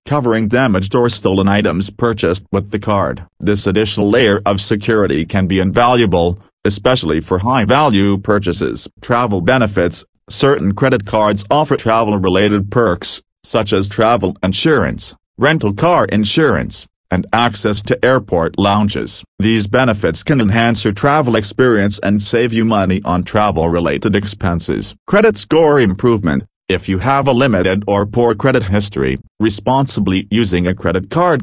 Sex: male